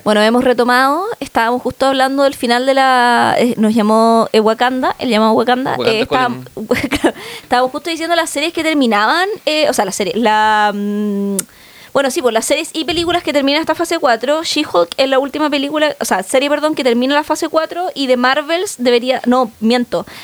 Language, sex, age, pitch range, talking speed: Spanish, female, 20-39, 230-290 Hz, 190 wpm